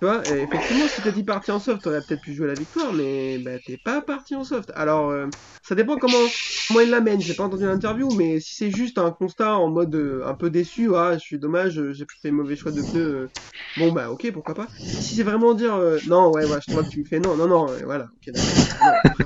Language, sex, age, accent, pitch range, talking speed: French, male, 20-39, French, 150-200 Hz, 265 wpm